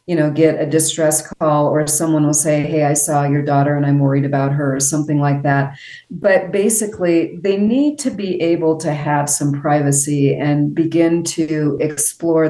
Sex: female